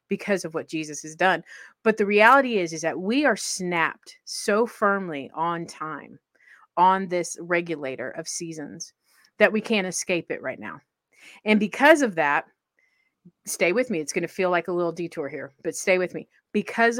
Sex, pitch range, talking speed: female, 175-225 Hz, 185 wpm